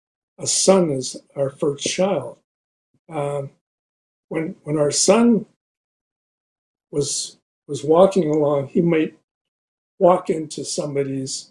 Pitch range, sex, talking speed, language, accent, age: 145-185 Hz, male, 105 wpm, English, American, 60-79